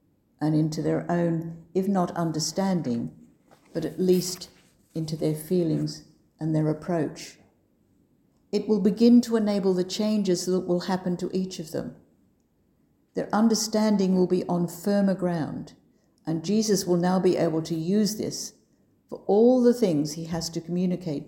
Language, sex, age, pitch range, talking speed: English, female, 60-79, 160-190 Hz, 150 wpm